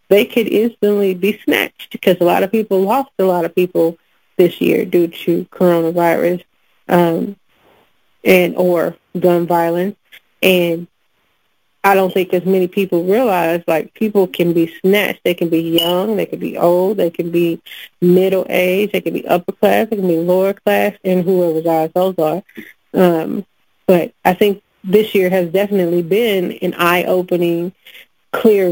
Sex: female